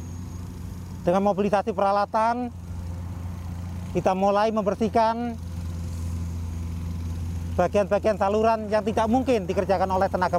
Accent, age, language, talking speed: native, 40-59, Indonesian, 80 wpm